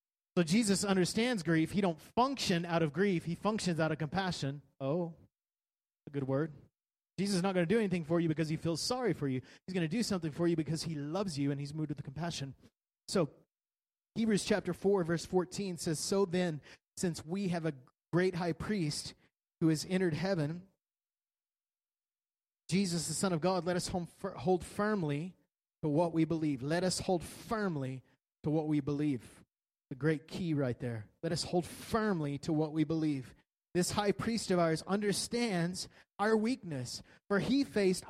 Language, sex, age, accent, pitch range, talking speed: English, male, 30-49, American, 155-195 Hz, 180 wpm